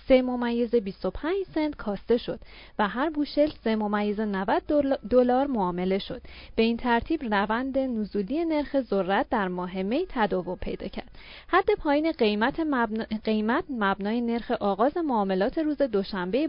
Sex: female